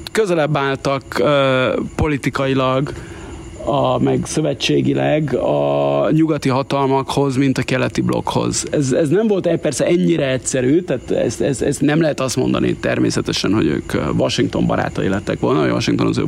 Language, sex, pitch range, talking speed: Hungarian, male, 115-155 Hz, 145 wpm